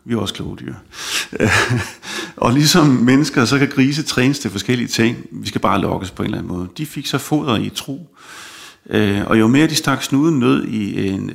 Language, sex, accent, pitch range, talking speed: Danish, male, native, 105-140 Hz, 205 wpm